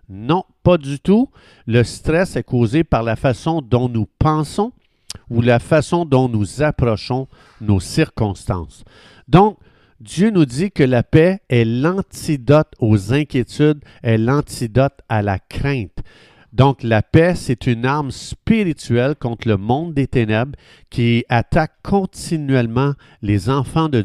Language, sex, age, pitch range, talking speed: French, male, 50-69, 110-150 Hz, 140 wpm